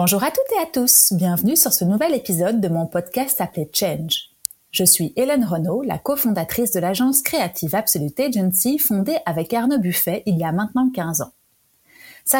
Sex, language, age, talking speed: female, French, 30-49, 185 wpm